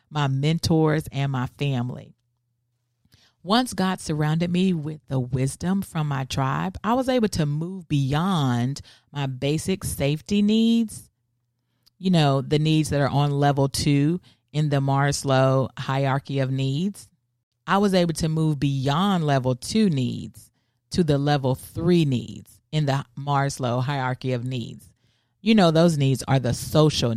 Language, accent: English, American